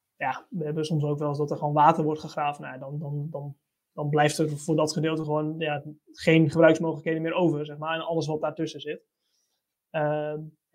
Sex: male